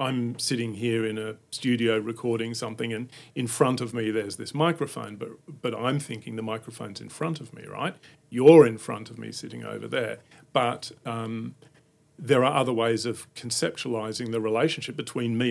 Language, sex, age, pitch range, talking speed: English, male, 40-59, 115-150 Hz, 180 wpm